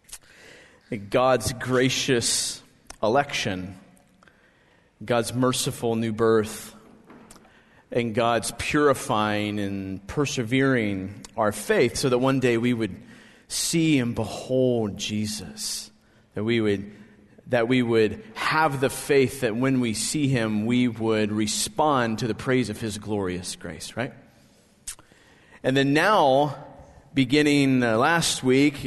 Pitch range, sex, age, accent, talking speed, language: 115-165 Hz, male, 30-49, American, 110 wpm, English